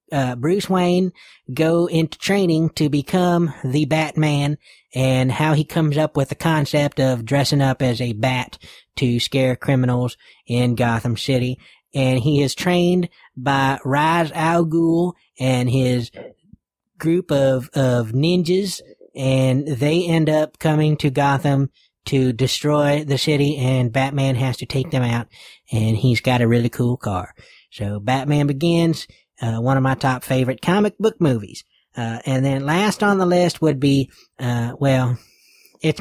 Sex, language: male, English